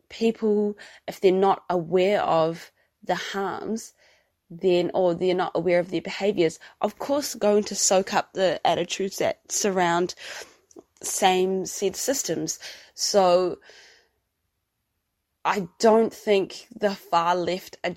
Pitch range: 170-195 Hz